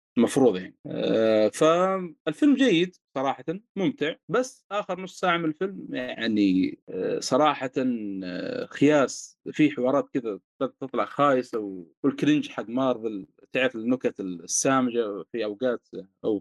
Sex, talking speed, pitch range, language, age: male, 110 wpm, 135-185 Hz, Arabic, 30-49